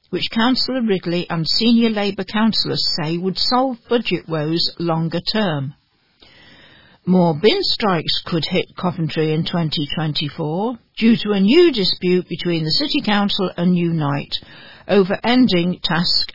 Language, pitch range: English, 165-215 Hz